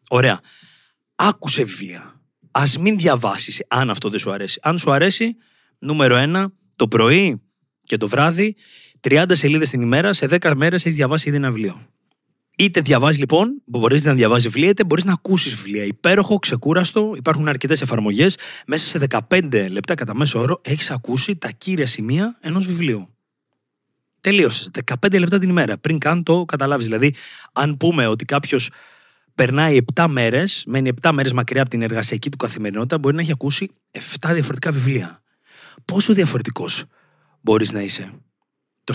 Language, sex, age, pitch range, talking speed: Greek, male, 30-49, 115-170 Hz, 160 wpm